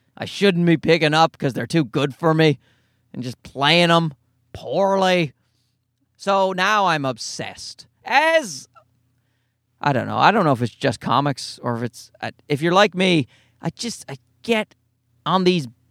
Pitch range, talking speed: 130-190 Hz, 165 wpm